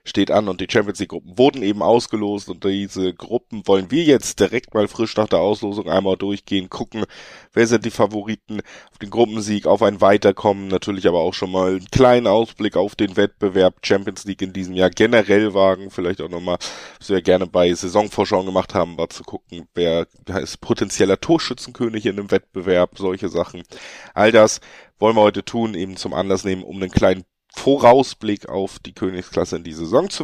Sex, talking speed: male, 185 wpm